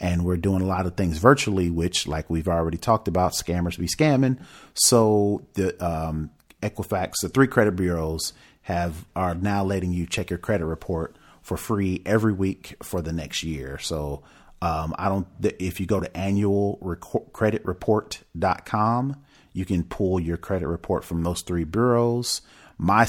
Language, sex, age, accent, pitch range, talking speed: English, male, 40-59, American, 85-105 Hz, 165 wpm